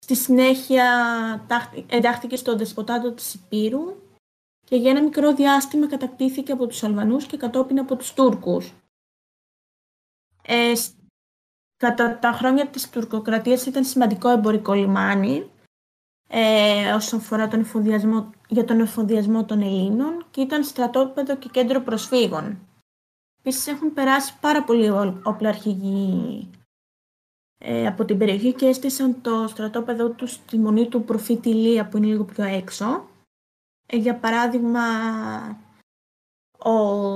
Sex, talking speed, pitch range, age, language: female, 120 wpm, 215-255 Hz, 20-39, Greek